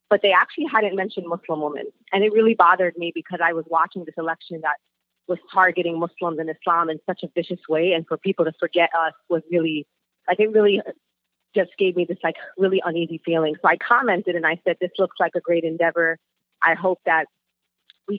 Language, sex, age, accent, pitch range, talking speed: English, female, 30-49, American, 170-195 Hz, 210 wpm